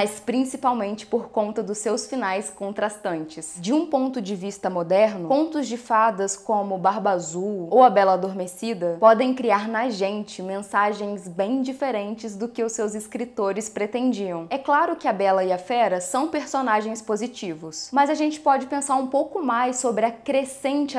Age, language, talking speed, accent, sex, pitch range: 10-29, Portuguese, 170 wpm, Brazilian, female, 195-250 Hz